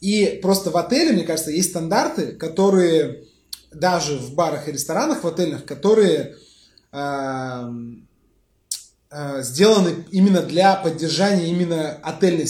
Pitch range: 155-190 Hz